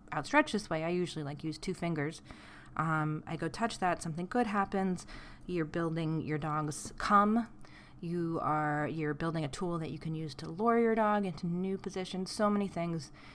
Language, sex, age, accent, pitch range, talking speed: English, female, 30-49, American, 160-195 Hz, 190 wpm